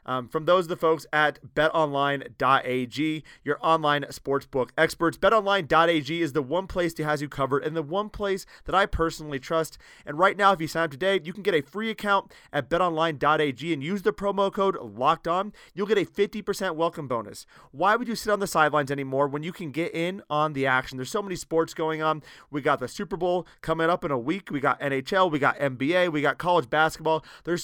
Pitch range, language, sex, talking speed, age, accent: 145-185 Hz, English, male, 220 wpm, 30-49, American